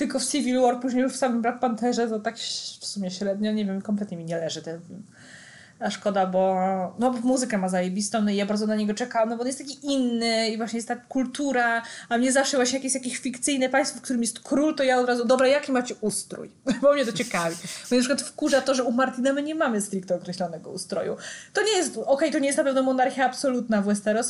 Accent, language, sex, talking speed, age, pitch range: native, Polish, female, 250 wpm, 20-39, 215-260 Hz